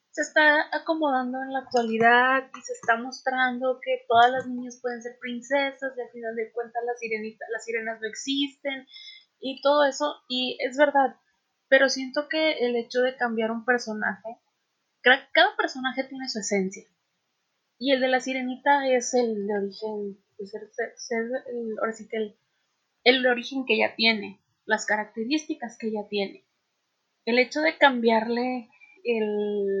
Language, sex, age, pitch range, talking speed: Spanish, female, 20-39, 215-255 Hz, 155 wpm